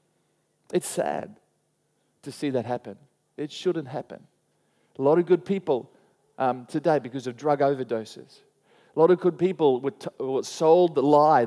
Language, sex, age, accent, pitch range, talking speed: English, male, 40-59, Australian, 140-185 Hz, 160 wpm